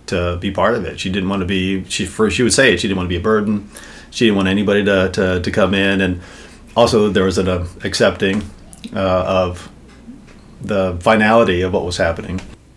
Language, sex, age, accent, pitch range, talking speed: English, male, 40-59, American, 95-105 Hz, 220 wpm